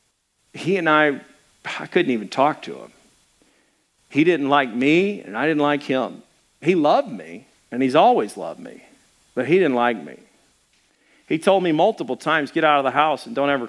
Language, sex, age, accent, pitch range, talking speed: English, male, 50-69, American, 145-195 Hz, 195 wpm